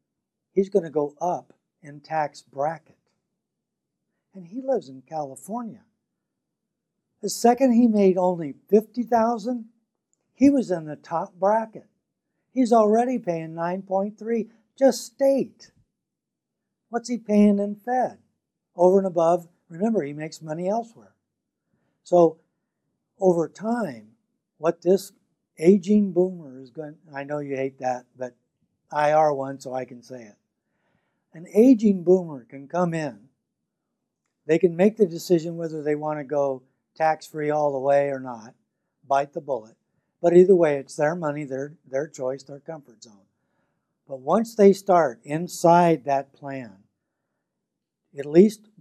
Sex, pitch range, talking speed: male, 140-195 Hz, 140 wpm